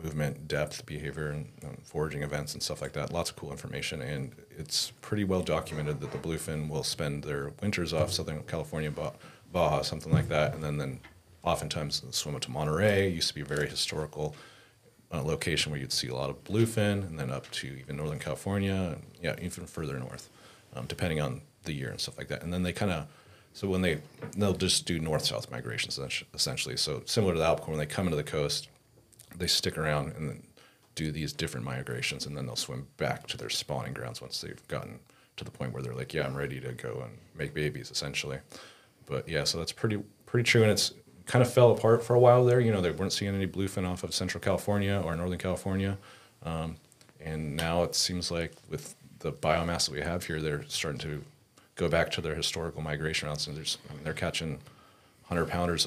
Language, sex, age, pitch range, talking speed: English, male, 30-49, 75-95 Hz, 215 wpm